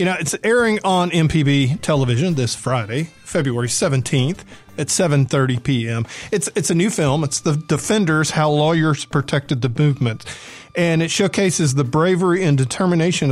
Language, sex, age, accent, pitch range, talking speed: English, male, 40-59, American, 135-170 Hz, 155 wpm